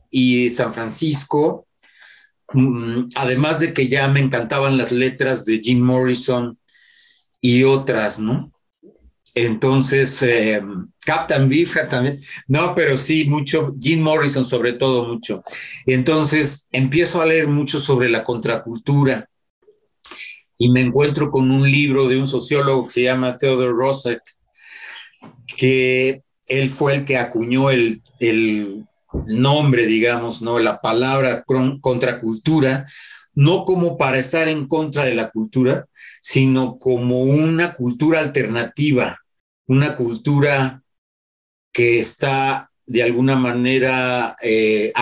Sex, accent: male, Mexican